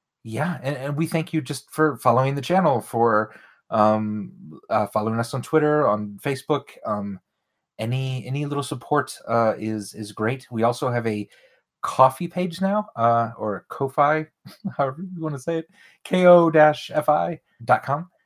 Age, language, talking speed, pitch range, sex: 30-49, English, 150 wpm, 110-150 Hz, male